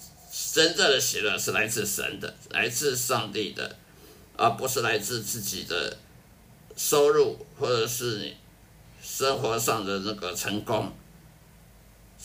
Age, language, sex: 50-69, Chinese, male